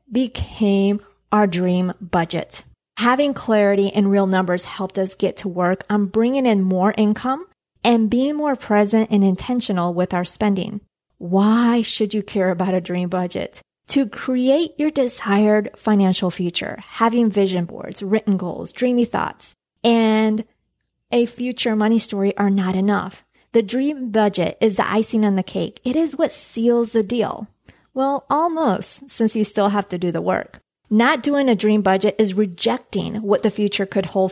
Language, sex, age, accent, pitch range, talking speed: English, female, 30-49, American, 195-235 Hz, 165 wpm